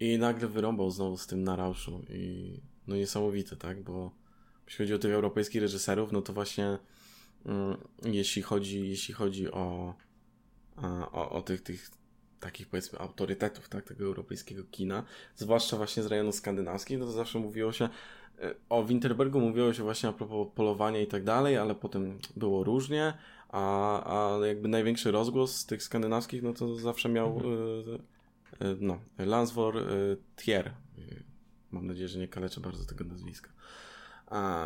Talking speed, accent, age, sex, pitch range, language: 160 wpm, native, 20-39, male, 100-115 Hz, Polish